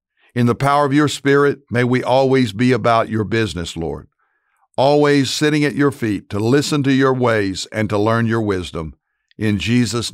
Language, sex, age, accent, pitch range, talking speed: English, male, 60-79, American, 110-135 Hz, 185 wpm